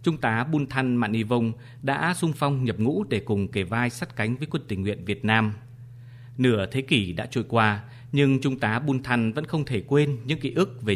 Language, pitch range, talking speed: Vietnamese, 110-130 Hz, 230 wpm